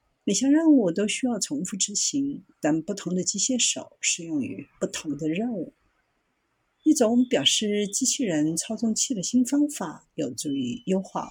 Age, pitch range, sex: 50-69, 170-265 Hz, female